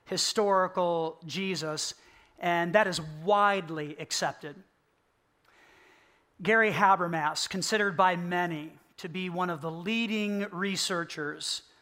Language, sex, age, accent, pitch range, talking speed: English, male, 40-59, American, 170-200 Hz, 95 wpm